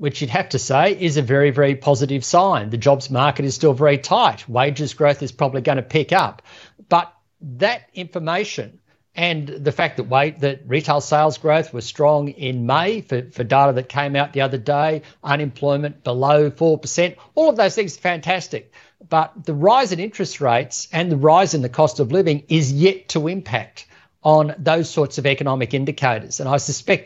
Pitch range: 135-155 Hz